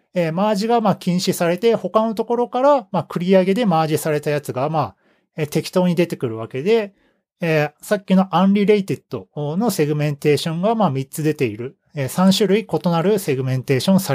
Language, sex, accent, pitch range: Japanese, male, native, 135-205 Hz